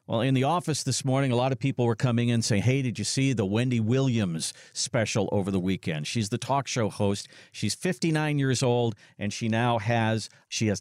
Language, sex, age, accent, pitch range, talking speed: English, male, 50-69, American, 110-140 Hz, 215 wpm